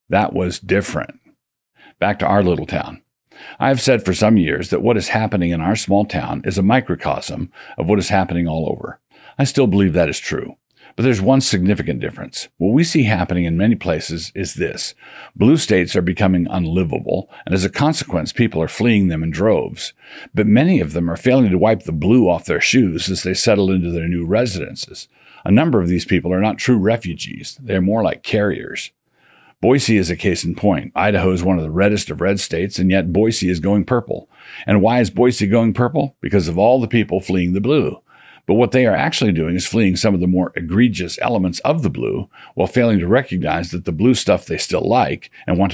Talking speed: 220 wpm